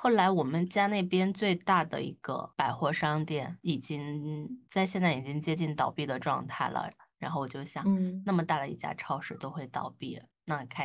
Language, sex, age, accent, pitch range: Chinese, female, 20-39, native, 140-175 Hz